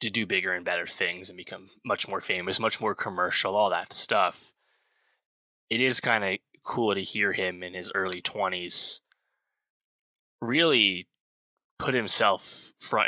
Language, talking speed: English, 150 wpm